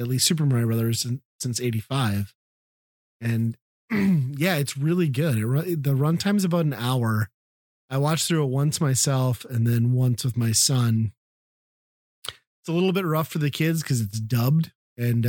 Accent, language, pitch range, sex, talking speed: American, English, 120-145 Hz, male, 170 wpm